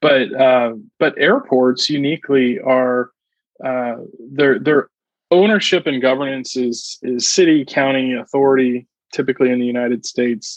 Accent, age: American, 20-39